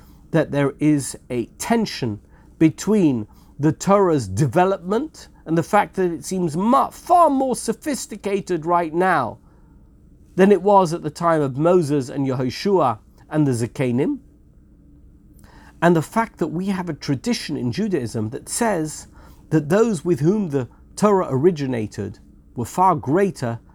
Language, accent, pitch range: English, British, 130-190 Hz